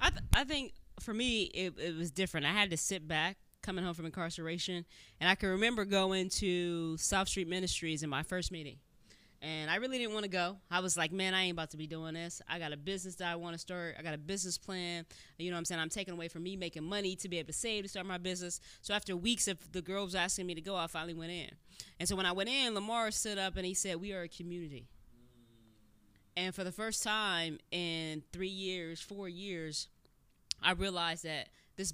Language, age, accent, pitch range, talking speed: English, 20-39, American, 165-195 Hz, 240 wpm